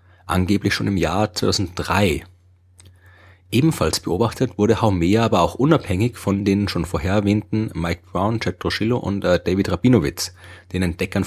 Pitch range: 90-105 Hz